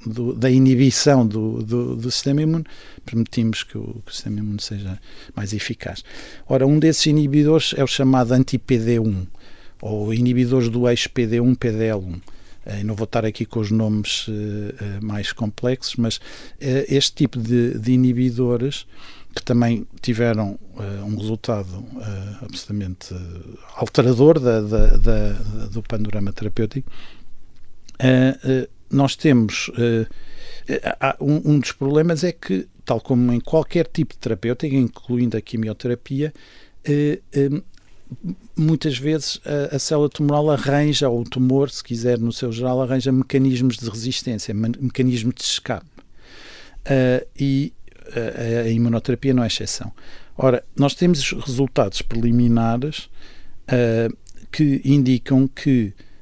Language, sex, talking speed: Portuguese, male, 140 wpm